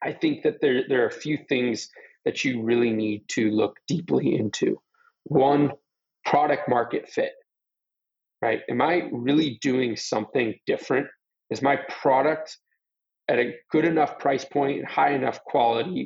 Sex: male